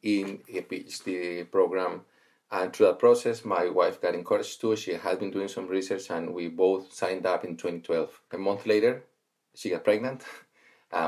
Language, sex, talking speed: English, male, 180 wpm